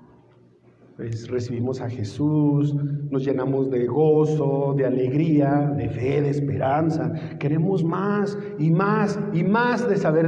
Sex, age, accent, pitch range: male, 50-69, Mexican, 135-190 Hz